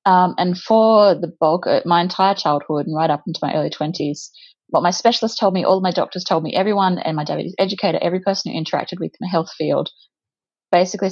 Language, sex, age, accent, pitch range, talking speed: English, female, 30-49, Australian, 160-190 Hz, 210 wpm